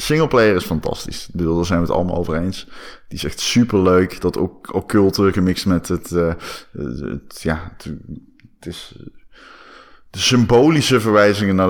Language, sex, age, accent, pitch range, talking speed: Dutch, male, 20-39, Dutch, 90-110 Hz, 165 wpm